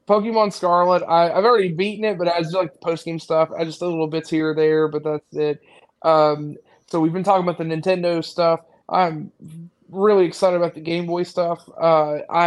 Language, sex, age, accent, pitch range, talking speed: English, male, 20-39, American, 160-185 Hz, 205 wpm